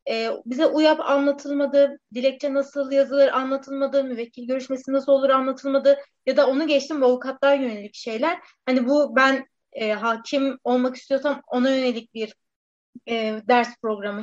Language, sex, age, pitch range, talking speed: Turkish, female, 30-49, 240-280 Hz, 140 wpm